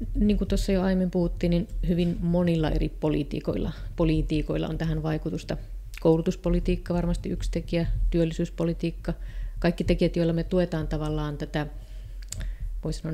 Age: 30-49